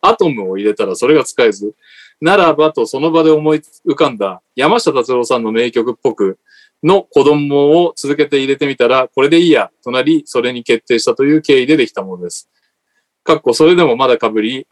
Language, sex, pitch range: Japanese, male, 140-205 Hz